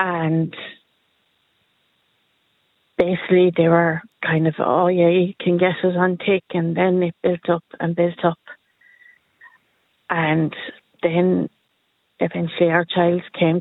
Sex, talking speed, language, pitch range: female, 125 wpm, English, 175-200 Hz